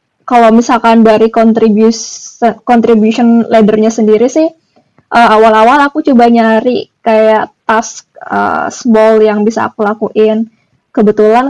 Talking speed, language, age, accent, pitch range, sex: 110 wpm, Indonesian, 20-39, native, 210-230 Hz, female